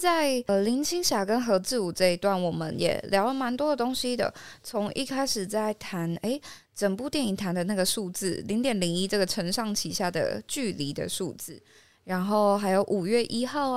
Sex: female